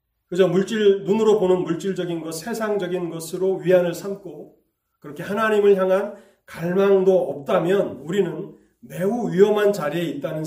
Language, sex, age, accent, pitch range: Korean, male, 30-49, native, 180-220 Hz